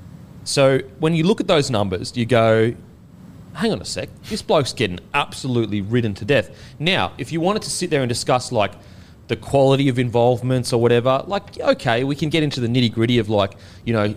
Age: 30-49